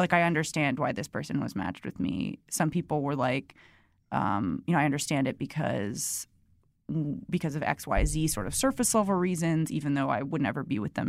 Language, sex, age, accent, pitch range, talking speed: English, female, 20-39, American, 140-175 Hz, 215 wpm